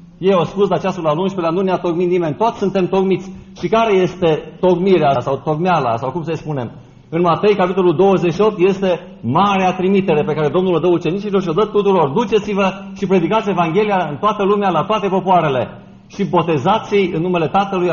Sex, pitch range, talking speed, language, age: male, 170-200 Hz, 185 wpm, Romanian, 50-69